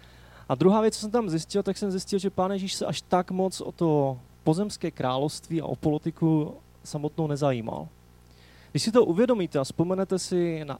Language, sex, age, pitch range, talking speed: Czech, male, 20-39, 125-160 Hz, 190 wpm